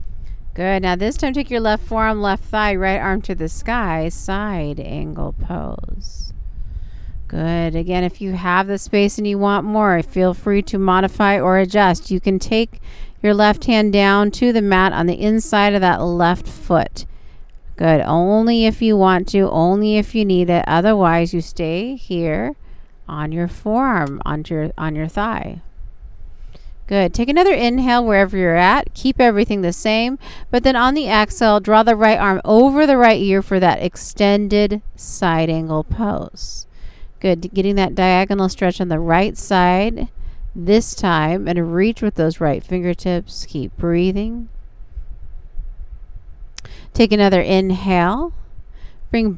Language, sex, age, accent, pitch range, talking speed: English, female, 40-59, American, 170-215 Hz, 155 wpm